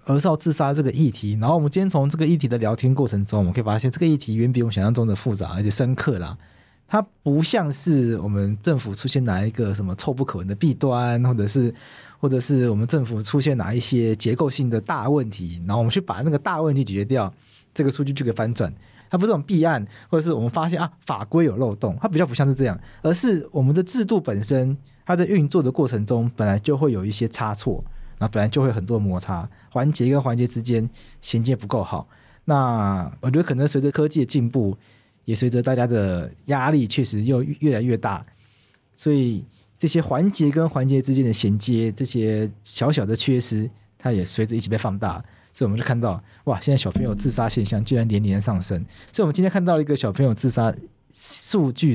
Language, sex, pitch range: Chinese, male, 110-145 Hz